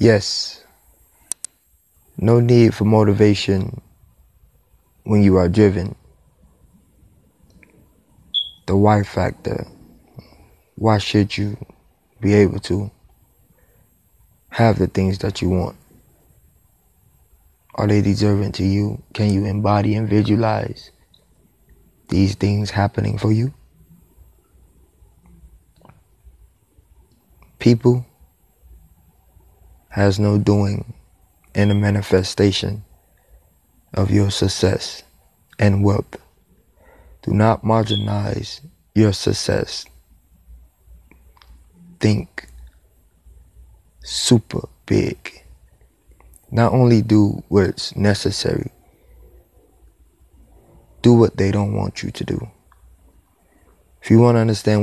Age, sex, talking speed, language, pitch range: 20-39, male, 85 wpm, English, 85-105 Hz